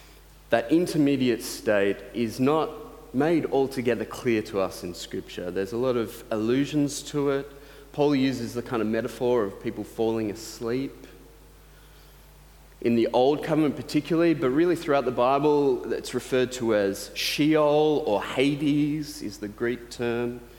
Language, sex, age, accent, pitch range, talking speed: English, male, 30-49, Australian, 115-145 Hz, 145 wpm